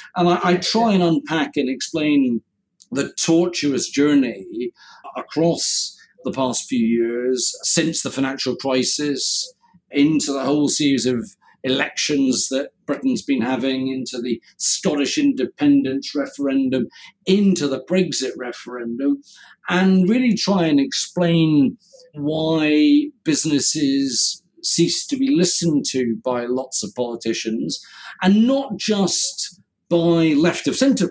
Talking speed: 120 wpm